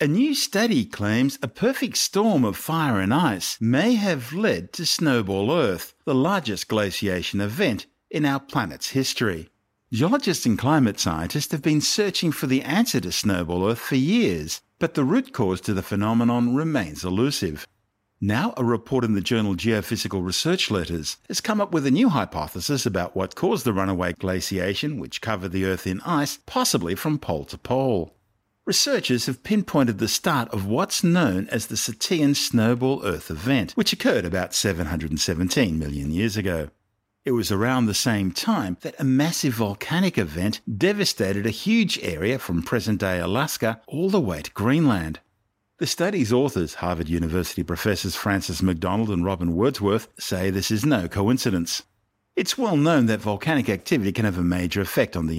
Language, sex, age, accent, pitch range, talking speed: English, male, 50-69, Australian, 95-140 Hz, 170 wpm